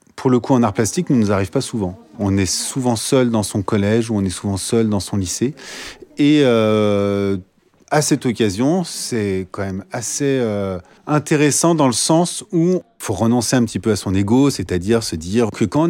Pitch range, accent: 105-135 Hz, French